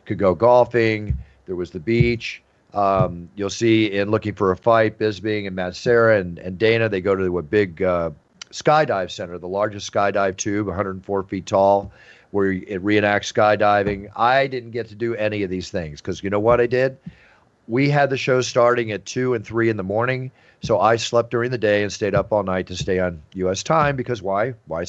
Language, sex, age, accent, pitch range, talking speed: English, male, 50-69, American, 100-125 Hz, 210 wpm